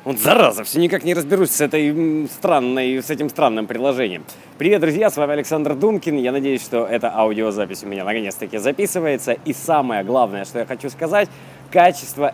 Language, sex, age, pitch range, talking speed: Russian, male, 20-39, 115-155 Hz, 165 wpm